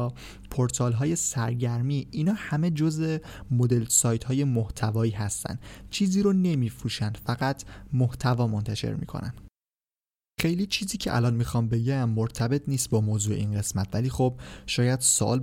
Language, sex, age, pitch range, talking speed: Persian, male, 20-39, 110-130 Hz, 135 wpm